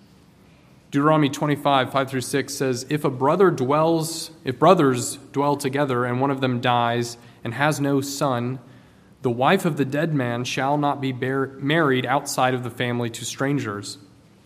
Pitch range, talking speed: 120-145 Hz, 170 wpm